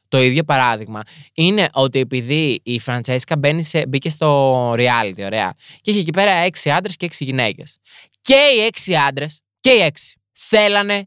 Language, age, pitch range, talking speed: Greek, 20-39, 140-210 Hz, 155 wpm